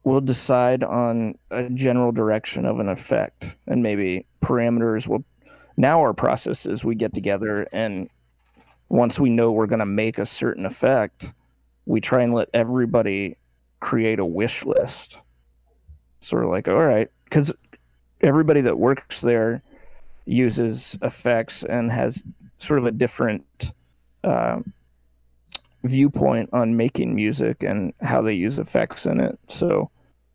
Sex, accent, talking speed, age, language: male, American, 140 wpm, 30-49, English